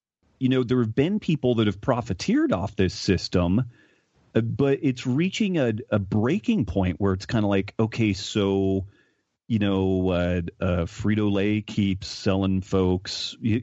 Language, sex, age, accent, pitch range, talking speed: English, male, 40-59, American, 100-120 Hz, 155 wpm